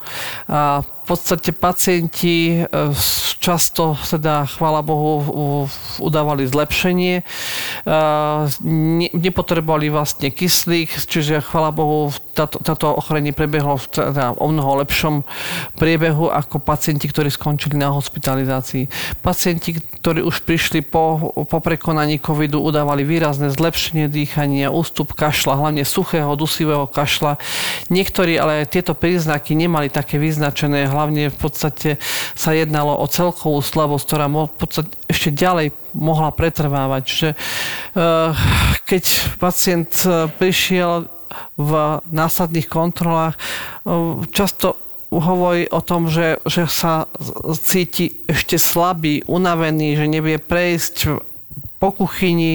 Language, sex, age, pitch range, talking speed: Slovak, male, 40-59, 150-170 Hz, 105 wpm